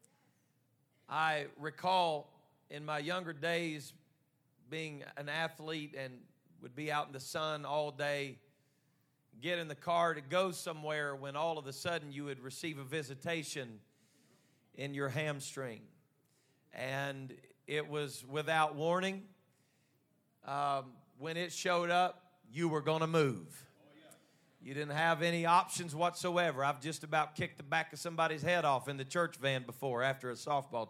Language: English